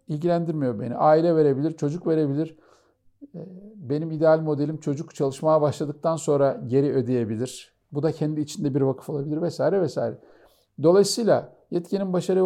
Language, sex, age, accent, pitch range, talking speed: Turkish, male, 50-69, native, 130-175 Hz, 130 wpm